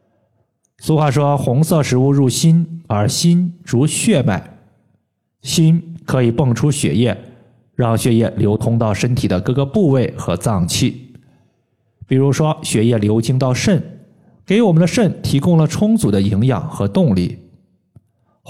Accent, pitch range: native, 110-145 Hz